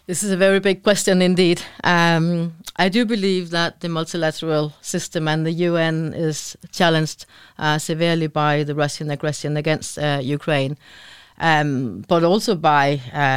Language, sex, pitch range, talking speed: Danish, female, 150-170 Hz, 155 wpm